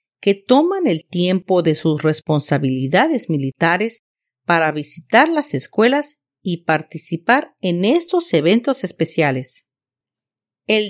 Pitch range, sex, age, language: 155-245 Hz, female, 40-59, Spanish